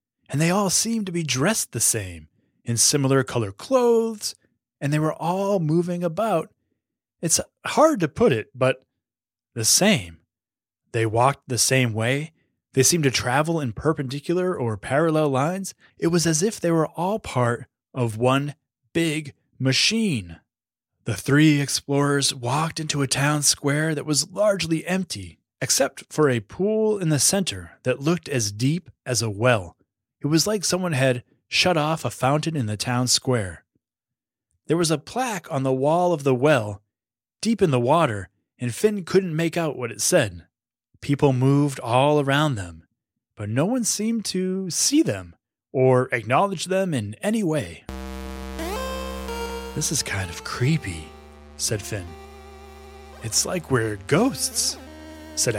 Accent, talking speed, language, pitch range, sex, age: American, 155 wpm, English, 110-165 Hz, male, 30-49